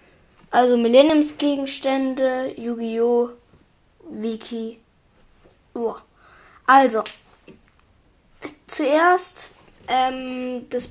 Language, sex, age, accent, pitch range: German, female, 20-39, German, 235-275 Hz